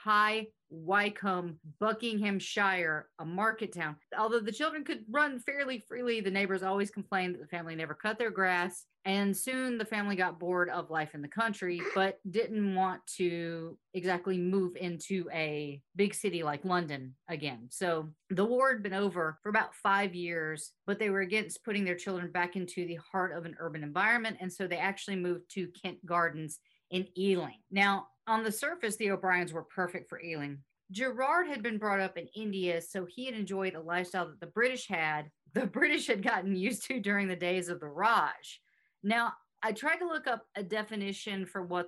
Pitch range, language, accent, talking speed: 170-210 Hz, English, American, 190 wpm